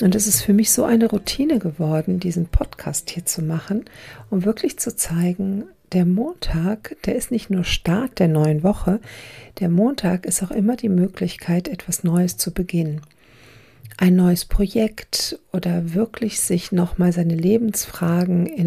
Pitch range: 170-205 Hz